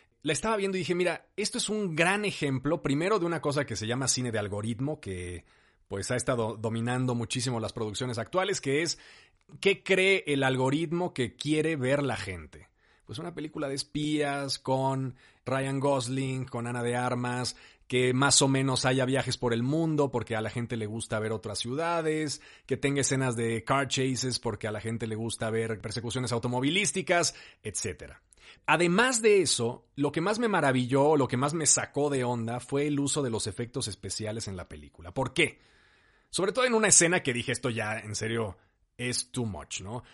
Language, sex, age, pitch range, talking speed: Spanish, male, 40-59, 115-145 Hz, 195 wpm